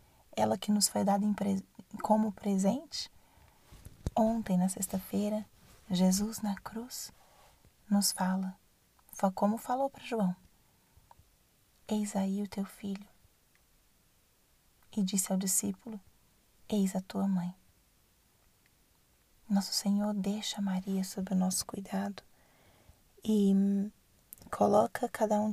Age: 20-39